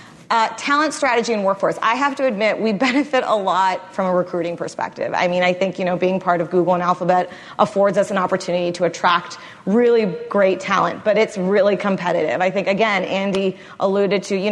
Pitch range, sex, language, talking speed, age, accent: 175-205 Hz, female, English, 205 wpm, 30-49, American